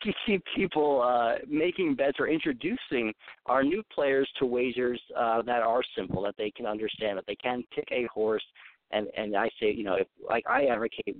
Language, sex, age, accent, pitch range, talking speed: English, male, 50-69, American, 115-160 Hz, 200 wpm